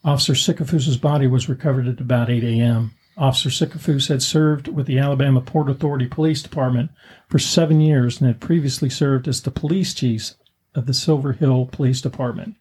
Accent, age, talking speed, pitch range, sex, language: American, 50-69, 175 wpm, 125-150 Hz, male, English